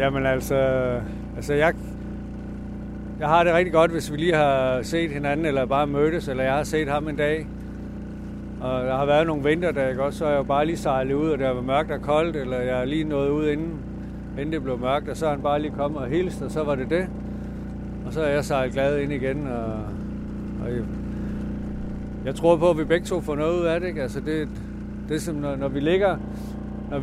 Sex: male